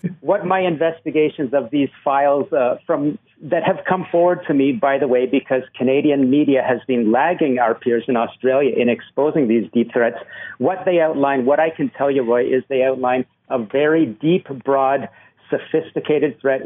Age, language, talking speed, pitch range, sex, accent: 50-69, English, 180 wpm, 130-155 Hz, male, American